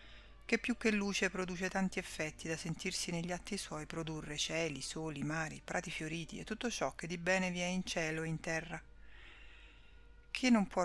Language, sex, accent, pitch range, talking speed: Italian, female, native, 160-190 Hz, 190 wpm